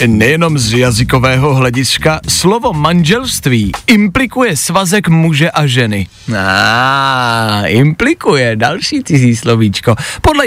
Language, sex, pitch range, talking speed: Czech, male, 140-200 Hz, 95 wpm